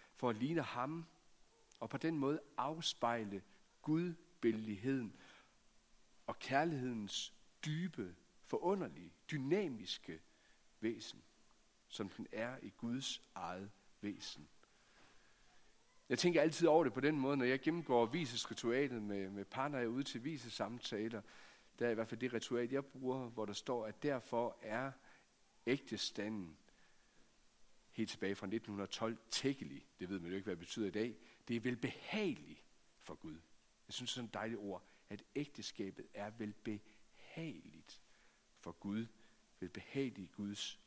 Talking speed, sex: 135 wpm, male